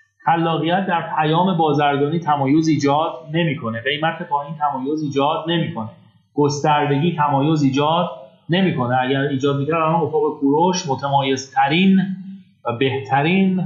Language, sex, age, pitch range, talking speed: Persian, male, 30-49, 135-175 Hz, 110 wpm